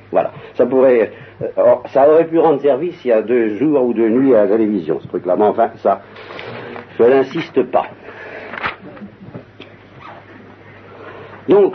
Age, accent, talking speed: 60-79, French, 145 wpm